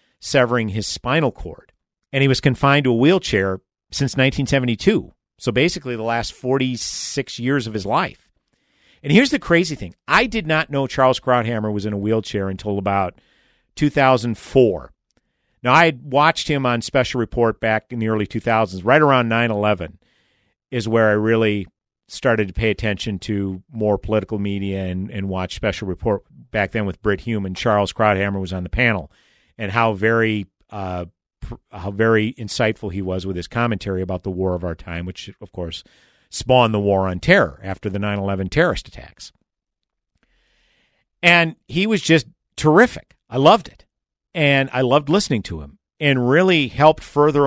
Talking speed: 170 wpm